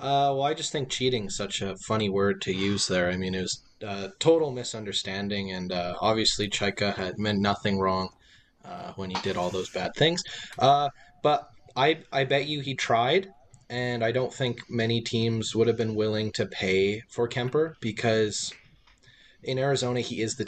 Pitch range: 100-120 Hz